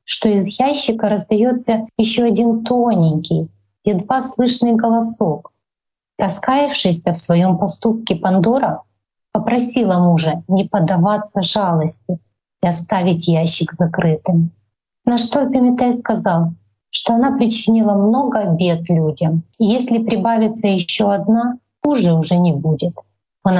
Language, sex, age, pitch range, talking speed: Russian, female, 30-49, 165-220 Hz, 115 wpm